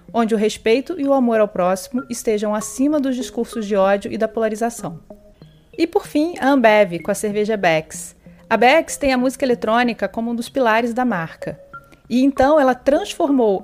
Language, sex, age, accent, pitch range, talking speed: Portuguese, female, 30-49, Brazilian, 210-275 Hz, 185 wpm